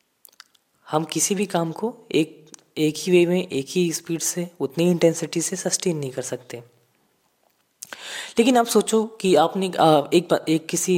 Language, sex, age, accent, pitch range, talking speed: Hindi, female, 20-39, native, 145-190 Hz, 165 wpm